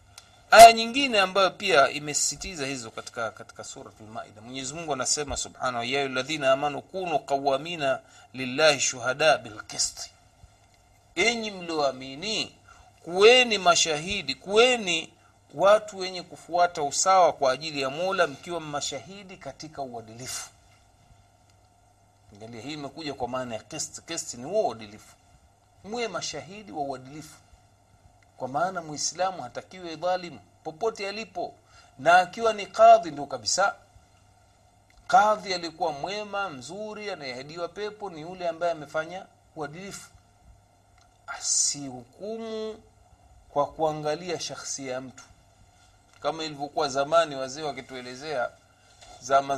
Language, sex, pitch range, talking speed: Swahili, male, 115-175 Hz, 110 wpm